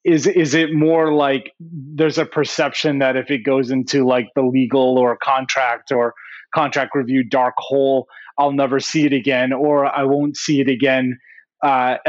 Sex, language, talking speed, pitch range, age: male, English, 175 wpm, 130-155 Hz, 30-49